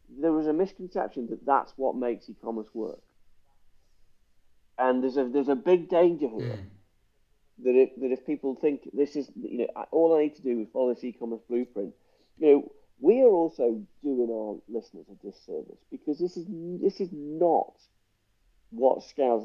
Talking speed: 175 wpm